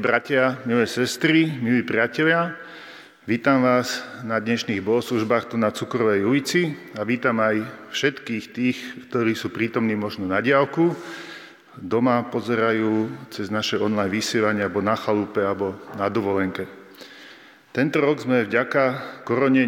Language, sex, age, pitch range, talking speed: Slovak, male, 40-59, 110-125 Hz, 130 wpm